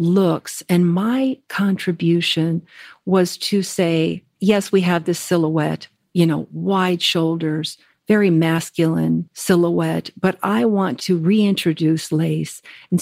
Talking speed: 120 wpm